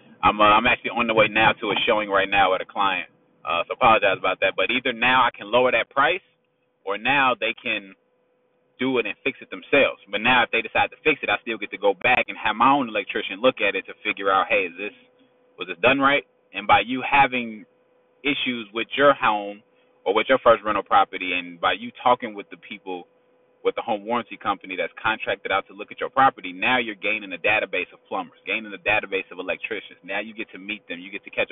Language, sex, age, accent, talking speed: English, male, 20-39, American, 240 wpm